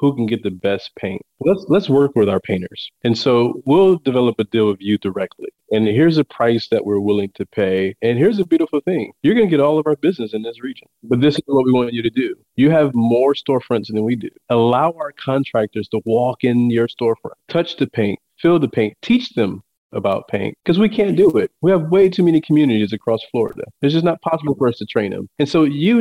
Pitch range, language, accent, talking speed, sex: 110-140 Hz, English, American, 240 wpm, male